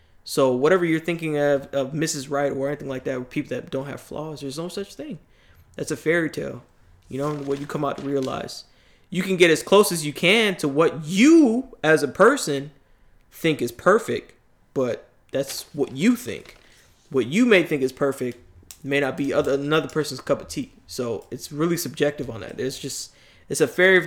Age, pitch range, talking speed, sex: 20-39, 130-170 Hz, 205 wpm, male